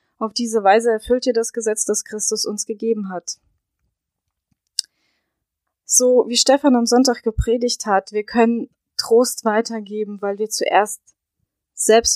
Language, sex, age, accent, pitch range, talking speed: German, female, 20-39, German, 195-235 Hz, 135 wpm